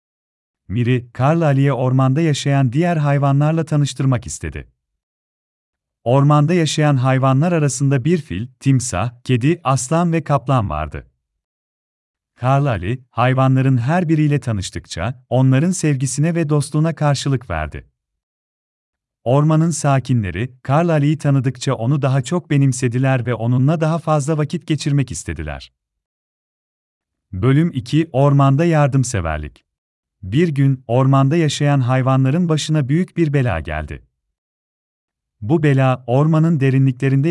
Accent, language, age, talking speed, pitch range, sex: native, Turkish, 40-59, 110 wpm, 90-150 Hz, male